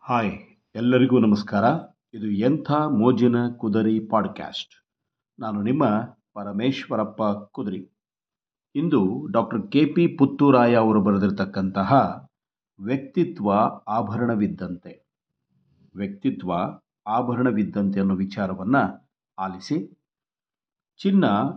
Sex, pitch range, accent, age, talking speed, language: male, 105-130 Hz, native, 50-69, 75 wpm, Kannada